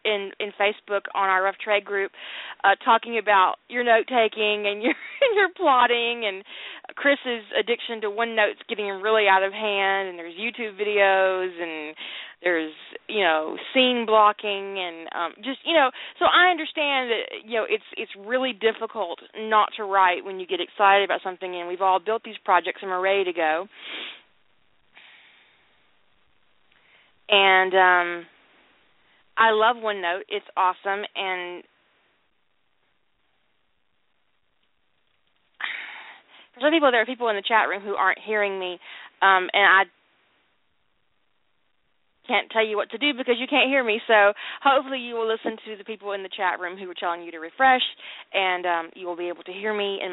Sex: female